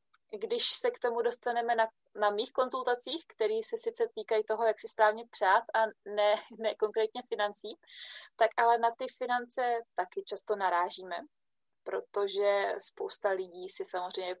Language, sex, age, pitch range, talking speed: Czech, female, 20-39, 210-330 Hz, 150 wpm